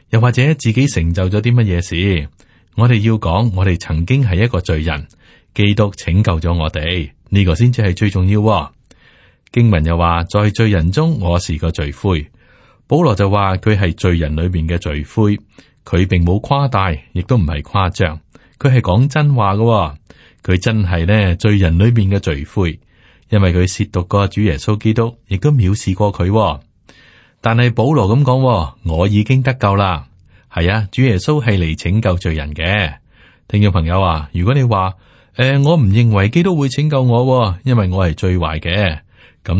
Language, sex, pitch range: Chinese, male, 85-115 Hz